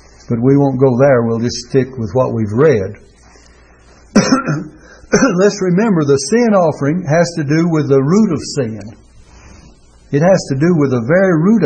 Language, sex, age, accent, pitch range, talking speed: English, male, 60-79, American, 125-175 Hz, 170 wpm